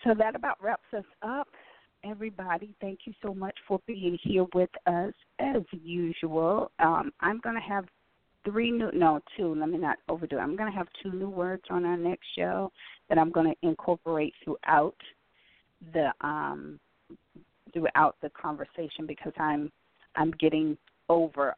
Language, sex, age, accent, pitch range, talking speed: English, female, 30-49, American, 155-200 Hz, 155 wpm